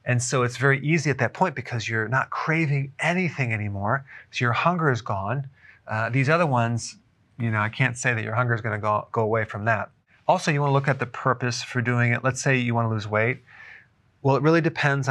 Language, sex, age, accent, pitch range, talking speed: English, male, 30-49, American, 115-140 Hz, 240 wpm